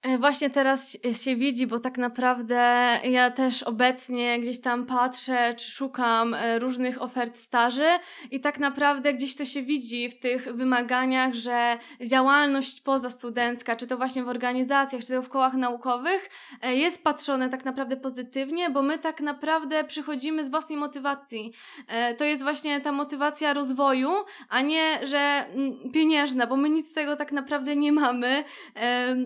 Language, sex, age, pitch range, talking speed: Polish, female, 20-39, 250-295 Hz, 150 wpm